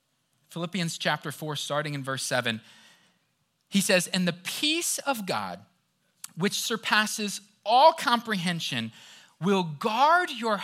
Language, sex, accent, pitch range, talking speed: English, male, American, 145-230 Hz, 120 wpm